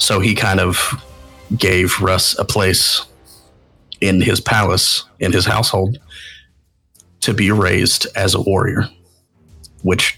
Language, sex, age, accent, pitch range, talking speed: English, male, 30-49, American, 95-110 Hz, 125 wpm